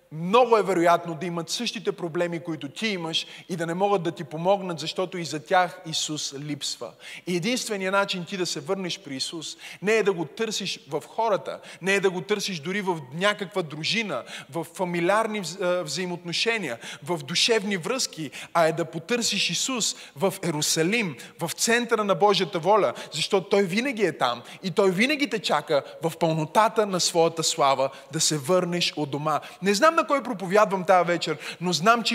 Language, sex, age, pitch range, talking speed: Bulgarian, male, 20-39, 175-225 Hz, 175 wpm